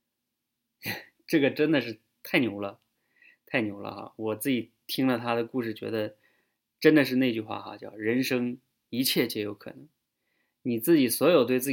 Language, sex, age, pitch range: Chinese, male, 20-39, 110-130 Hz